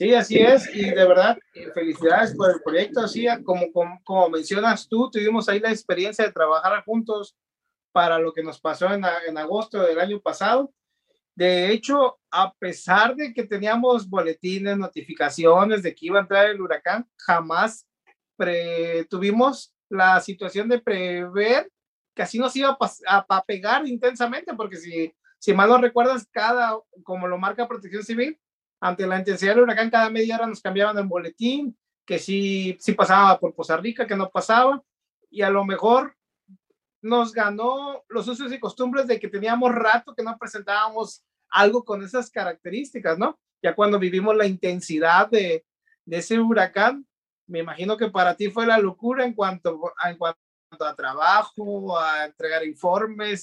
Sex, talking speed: male, 165 wpm